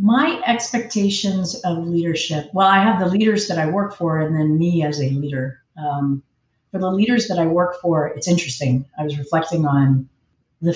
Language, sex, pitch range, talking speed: English, female, 145-180 Hz, 190 wpm